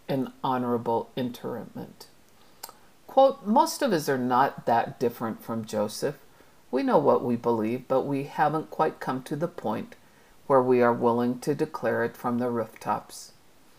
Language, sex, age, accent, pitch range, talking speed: English, female, 50-69, American, 120-145 Hz, 155 wpm